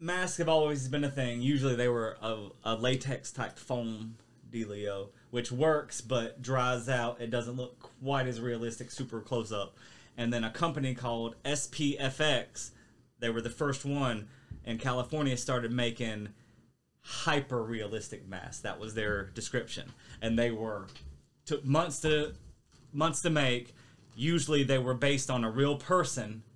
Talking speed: 155 wpm